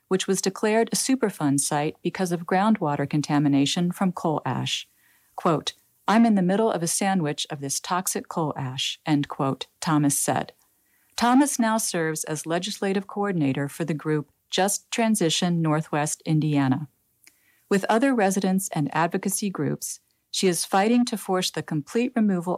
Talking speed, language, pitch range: 150 wpm, English, 150-200 Hz